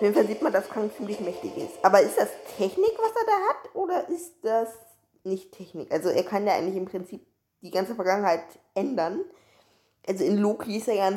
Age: 20-39